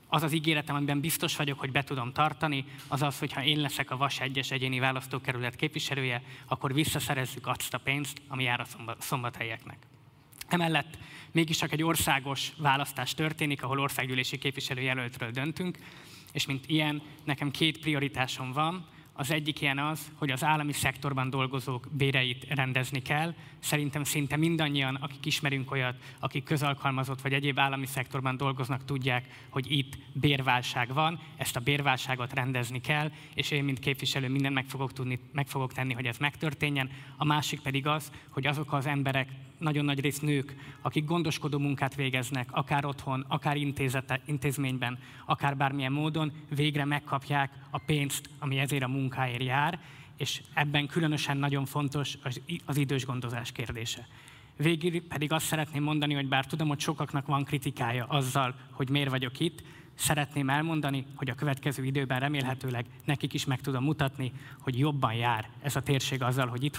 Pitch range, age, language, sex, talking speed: 130-150 Hz, 20-39, Hungarian, male, 155 wpm